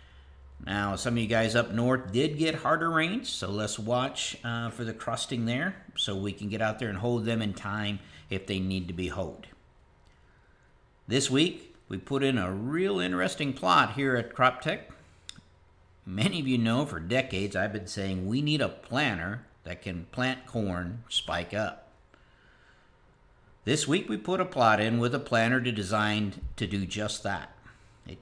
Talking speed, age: 175 wpm, 50-69